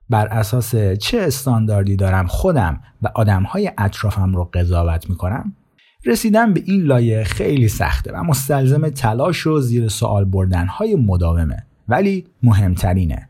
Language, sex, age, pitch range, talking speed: Persian, male, 30-49, 100-135 Hz, 125 wpm